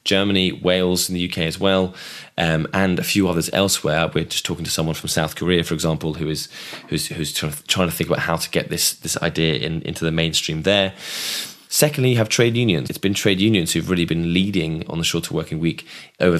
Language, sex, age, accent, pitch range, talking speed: English, male, 10-29, British, 80-100 Hz, 225 wpm